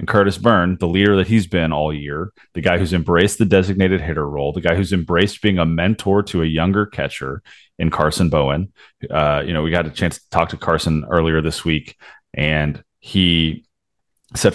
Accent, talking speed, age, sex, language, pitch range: American, 200 wpm, 30-49, male, English, 80-95 Hz